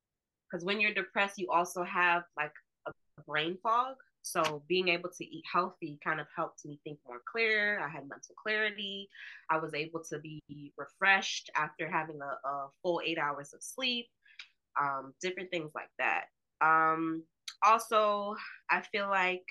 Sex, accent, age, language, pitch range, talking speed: female, American, 20-39, English, 150-190 Hz, 165 wpm